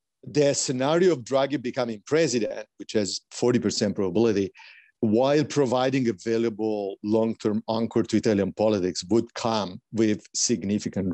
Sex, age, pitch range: male, 50-69, 105-125 Hz